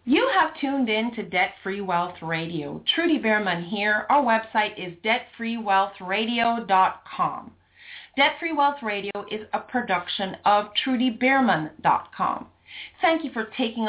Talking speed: 115 wpm